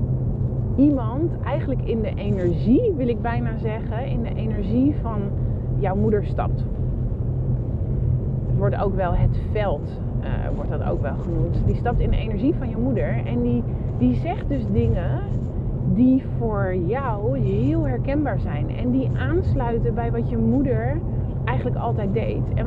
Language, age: Dutch, 20-39